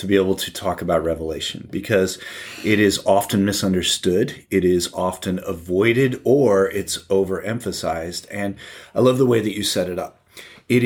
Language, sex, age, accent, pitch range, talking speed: English, male, 30-49, American, 90-110 Hz, 165 wpm